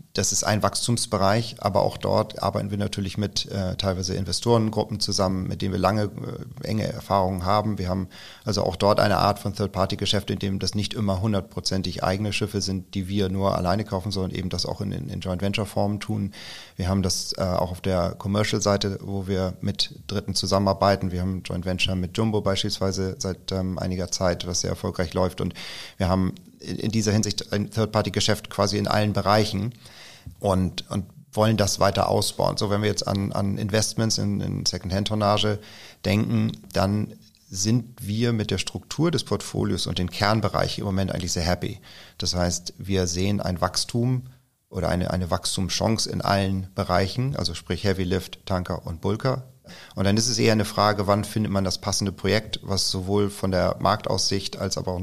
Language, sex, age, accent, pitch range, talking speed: German, male, 40-59, German, 95-105 Hz, 185 wpm